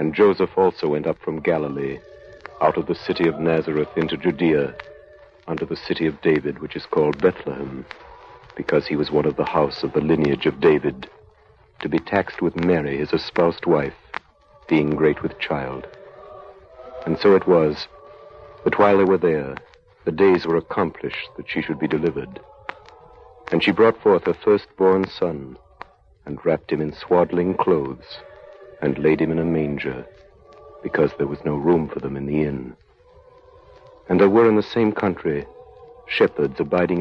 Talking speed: 170 wpm